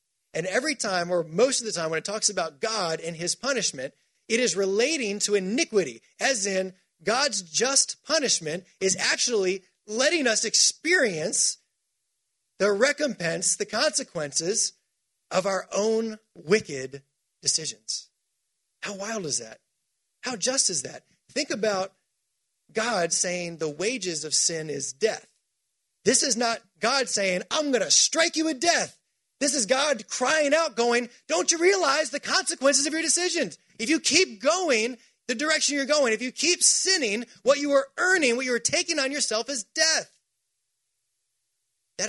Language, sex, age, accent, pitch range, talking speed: English, male, 30-49, American, 170-270 Hz, 155 wpm